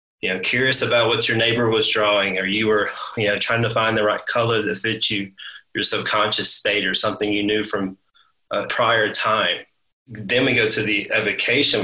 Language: English